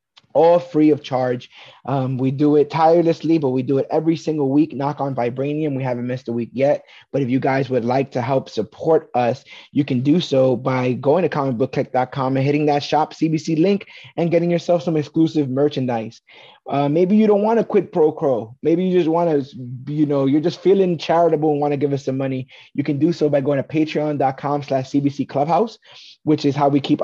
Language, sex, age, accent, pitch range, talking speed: English, male, 20-39, American, 130-155 Hz, 215 wpm